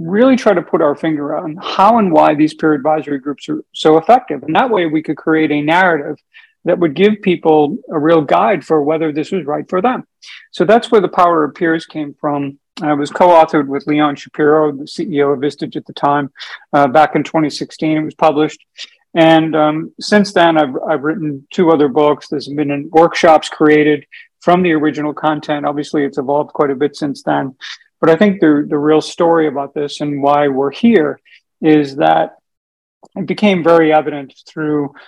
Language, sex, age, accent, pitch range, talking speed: English, male, 50-69, American, 150-170 Hz, 195 wpm